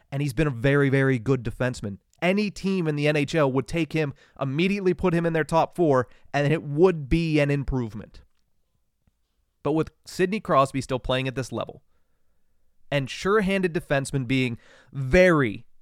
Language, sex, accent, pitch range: English, male, American, 125-160 Hz